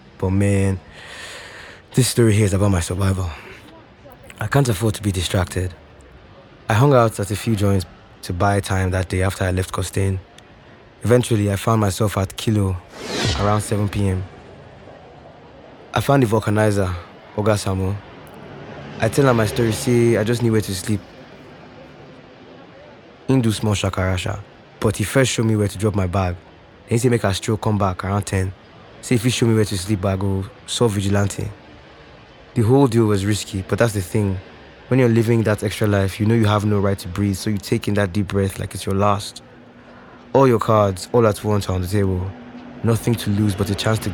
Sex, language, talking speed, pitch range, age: male, English, 195 wpm, 95-110 Hz, 20-39